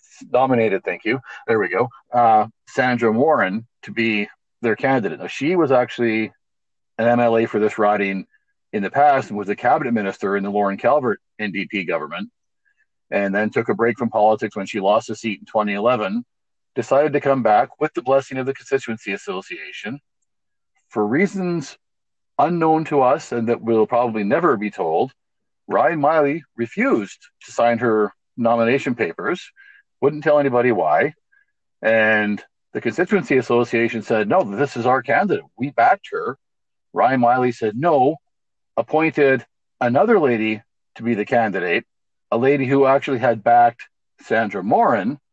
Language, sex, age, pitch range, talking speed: English, male, 50-69, 110-145 Hz, 155 wpm